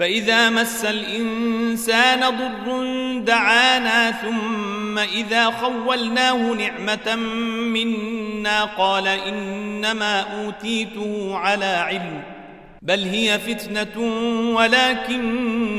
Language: Arabic